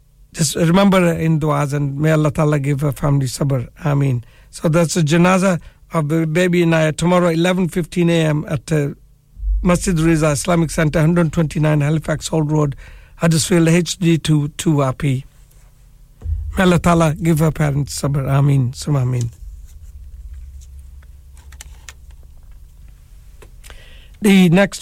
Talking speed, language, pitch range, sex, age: 115 wpm, English, 140-170 Hz, male, 60-79